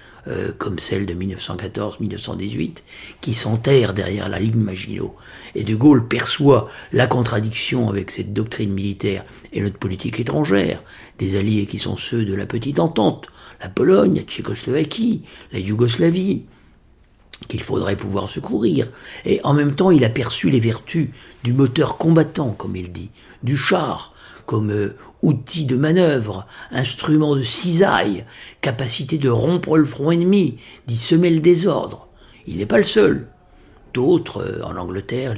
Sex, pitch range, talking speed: male, 105-140 Hz, 145 wpm